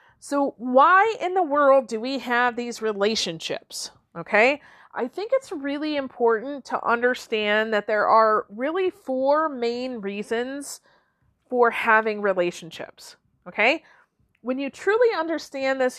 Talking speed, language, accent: 130 wpm, English, American